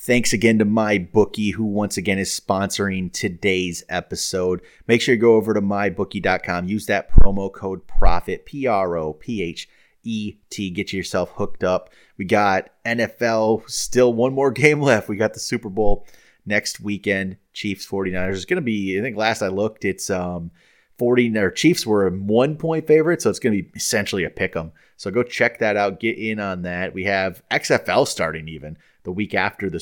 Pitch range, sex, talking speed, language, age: 95-110 Hz, male, 195 wpm, English, 30-49